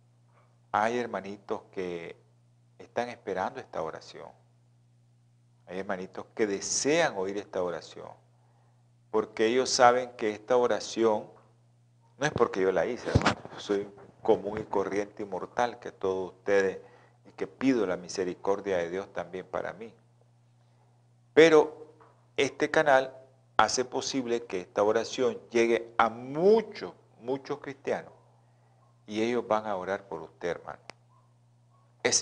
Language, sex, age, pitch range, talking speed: Spanish, male, 40-59, 105-120 Hz, 125 wpm